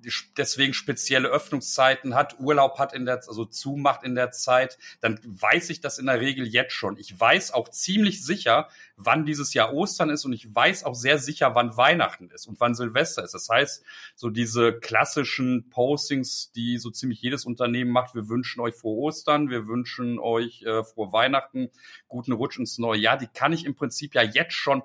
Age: 40-59